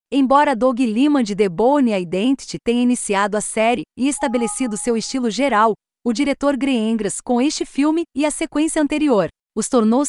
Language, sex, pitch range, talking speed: Portuguese, female, 205-260 Hz, 165 wpm